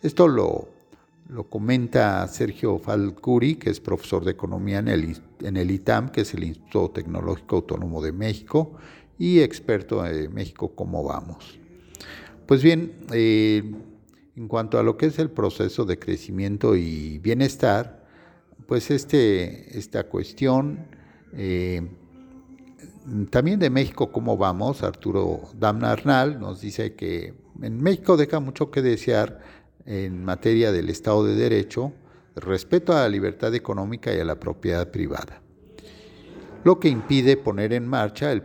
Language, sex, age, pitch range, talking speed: Spanish, male, 50-69, 95-135 Hz, 135 wpm